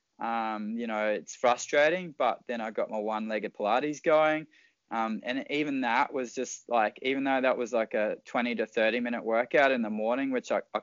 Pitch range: 115-145 Hz